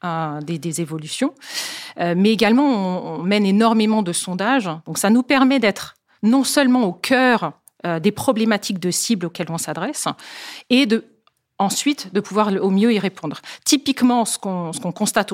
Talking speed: 175 wpm